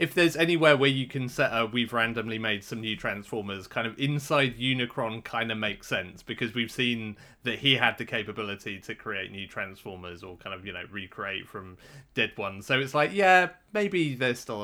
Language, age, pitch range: English, 30-49, 110-135 Hz